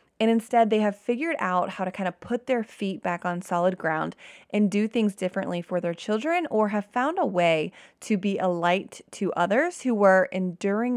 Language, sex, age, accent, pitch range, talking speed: English, female, 20-39, American, 180-230 Hz, 210 wpm